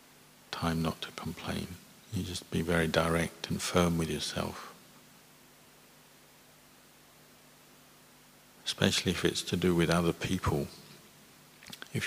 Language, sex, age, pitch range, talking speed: English, male, 50-69, 80-85 Hz, 110 wpm